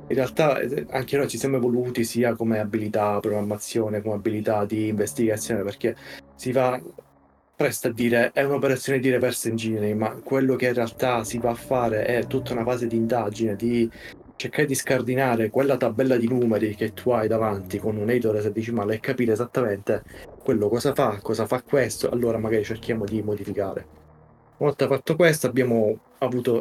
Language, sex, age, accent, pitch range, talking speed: Italian, male, 30-49, native, 110-125 Hz, 175 wpm